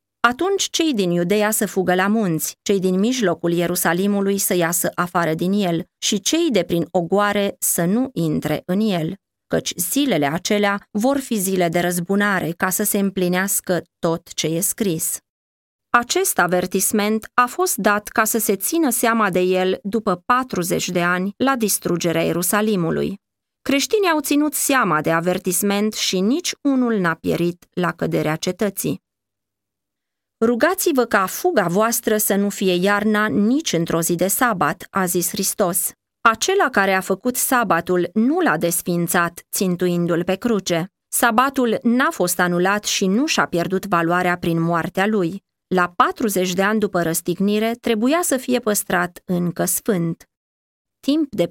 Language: Romanian